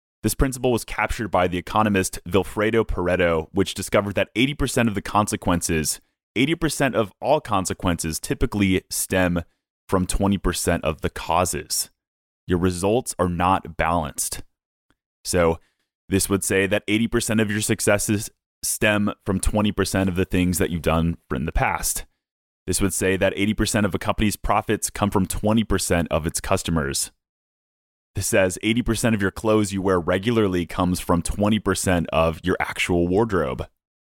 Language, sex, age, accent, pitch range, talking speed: English, male, 30-49, American, 85-105 Hz, 150 wpm